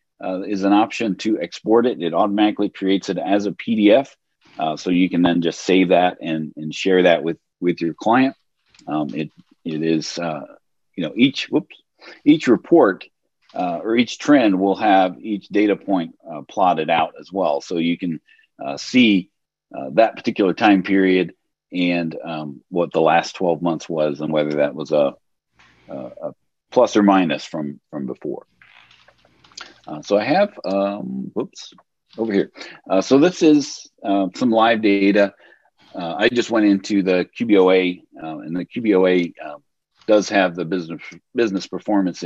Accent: American